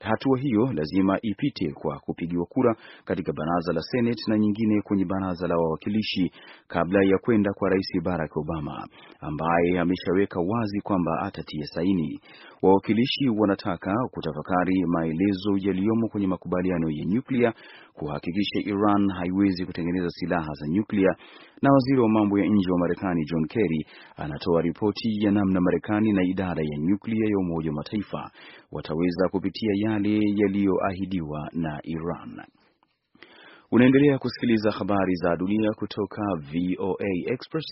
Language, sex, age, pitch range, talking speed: Swahili, male, 30-49, 85-105 Hz, 130 wpm